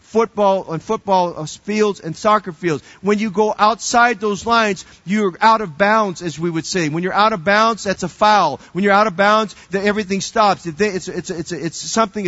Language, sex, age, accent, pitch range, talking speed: English, male, 40-59, American, 180-220 Hz, 190 wpm